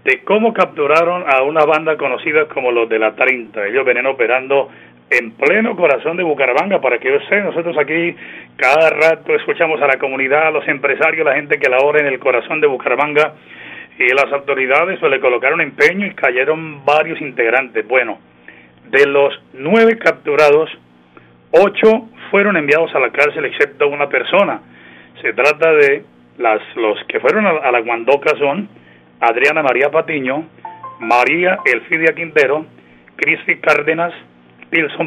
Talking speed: 155 wpm